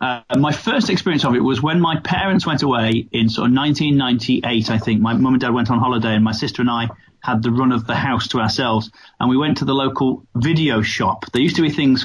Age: 30-49